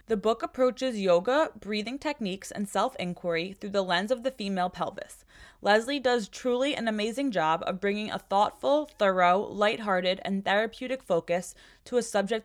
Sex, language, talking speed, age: female, English, 160 wpm, 20-39